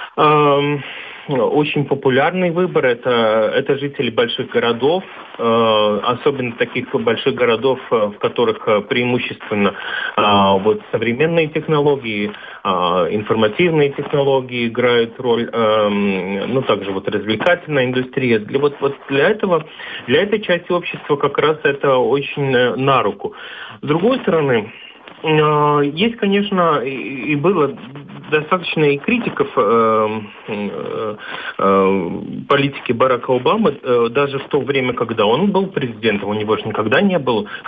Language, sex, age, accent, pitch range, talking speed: Russian, male, 30-49, native, 110-165 Hz, 115 wpm